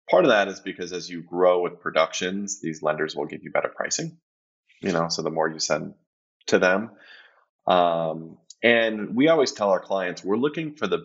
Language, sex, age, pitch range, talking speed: English, male, 20-39, 85-105 Hz, 200 wpm